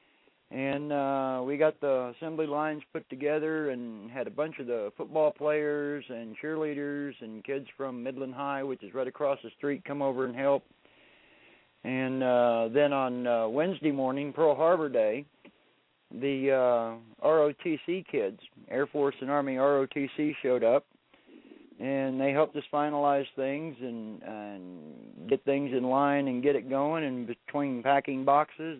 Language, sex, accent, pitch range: English, male, American, 130-155 Hz